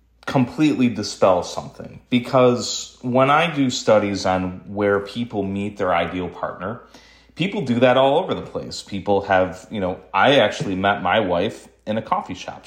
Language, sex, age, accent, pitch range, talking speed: English, male, 30-49, American, 95-125 Hz, 165 wpm